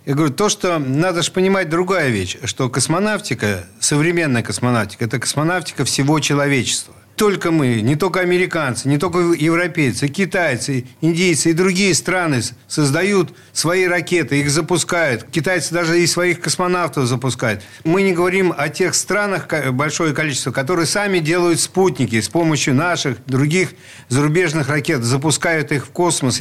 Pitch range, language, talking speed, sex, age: 135-175 Hz, Russian, 145 wpm, male, 50-69